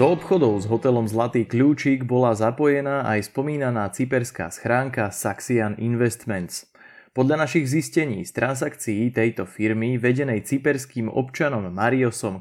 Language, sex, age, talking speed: Slovak, male, 20-39, 120 wpm